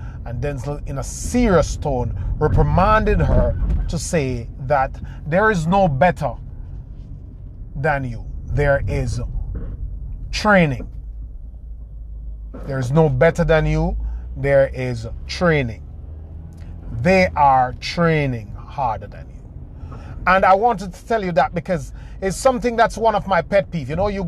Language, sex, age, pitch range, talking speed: English, male, 30-49, 125-175 Hz, 135 wpm